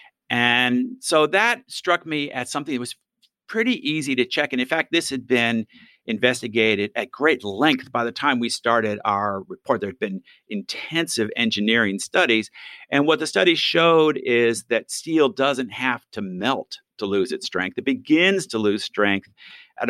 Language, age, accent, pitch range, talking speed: English, 50-69, American, 115-155 Hz, 175 wpm